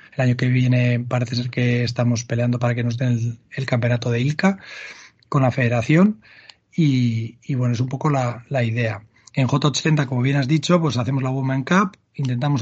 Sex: male